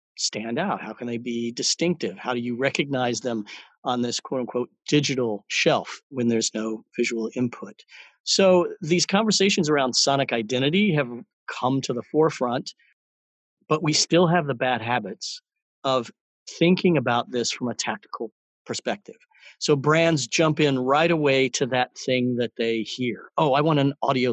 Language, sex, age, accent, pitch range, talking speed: English, male, 40-59, American, 120-155 Hz, 160 wpm